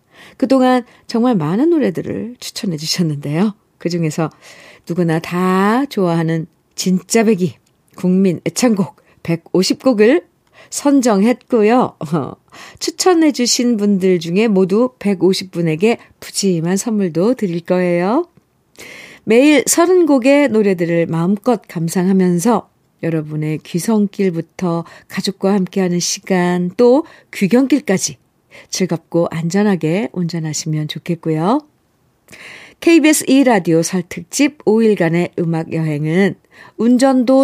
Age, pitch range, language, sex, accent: 50-69, 170-245 Hz, Korean, female, native